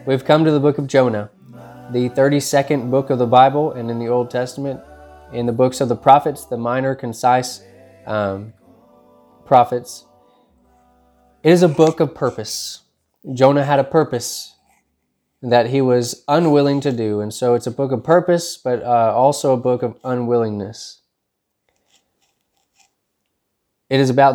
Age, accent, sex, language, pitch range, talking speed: 20-39, American, male, English, 120-145 Hz, 155 wpm